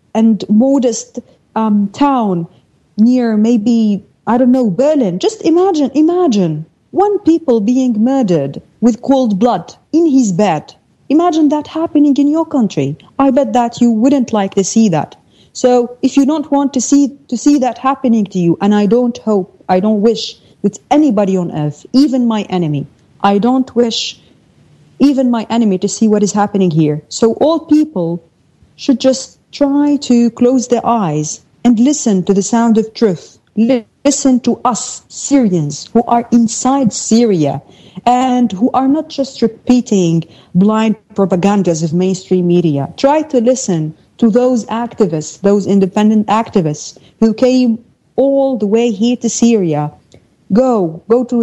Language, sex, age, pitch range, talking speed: English, female, 30-49, 200-260 Hz, 155 wpm